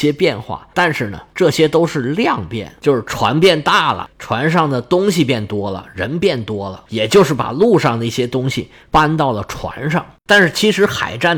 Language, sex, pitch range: Chinese, male, 120-170 Hz